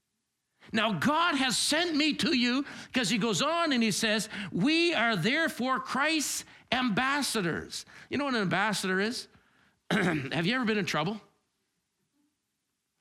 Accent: American